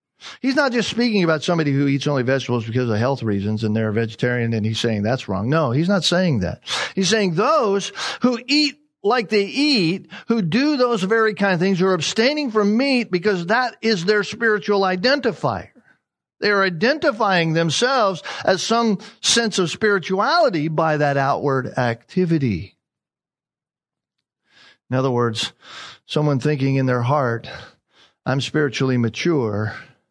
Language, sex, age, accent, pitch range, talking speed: English, male, 50-69, American, 120-200 Hz, 155 wpm